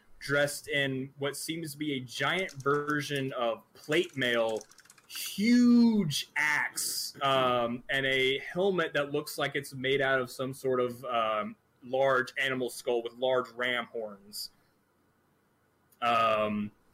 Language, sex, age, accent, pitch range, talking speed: English, male, 20-39, American, 125-150 Hz, 130 wpm